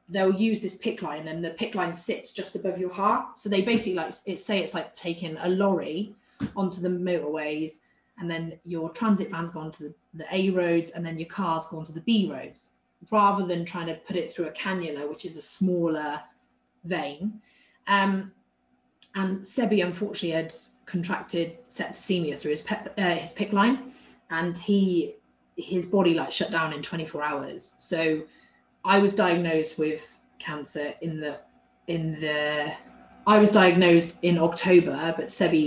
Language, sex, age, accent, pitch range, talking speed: English, female, 20-39, British, 160-195 Hz, 175 wpm